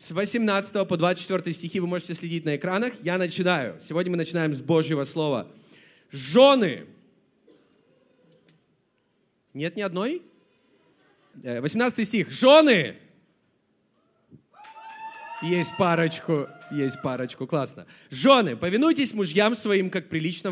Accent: native